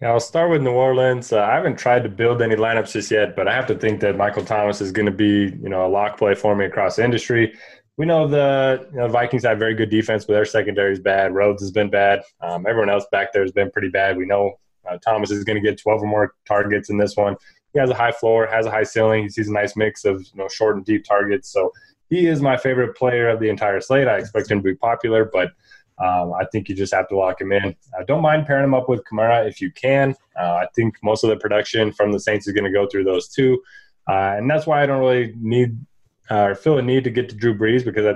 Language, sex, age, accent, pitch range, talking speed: English, male, 20-39, American, 100-125 Hz, 280 wpm